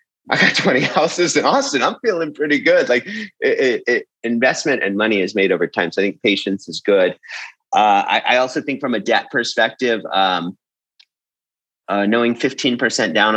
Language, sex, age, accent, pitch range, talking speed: English, male, 30-49, American, 100-130 Hz, 190 wpm